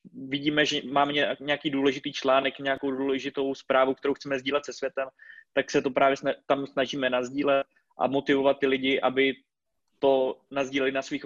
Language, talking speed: Czech, 160 wpm